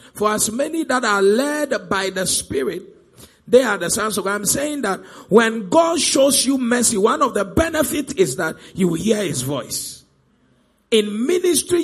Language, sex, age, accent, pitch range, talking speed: English, male, 50-69, Nigerian, 215-295 Hz, 185 wpm